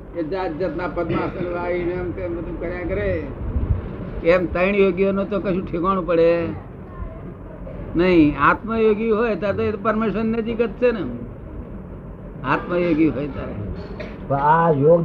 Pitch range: 160-200 Hz